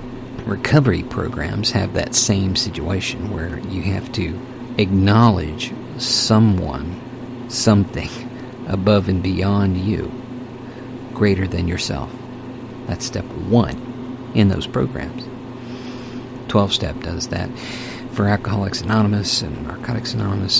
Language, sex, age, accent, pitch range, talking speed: English, male, 50-69, American, 110-125 Hz, 100 wpm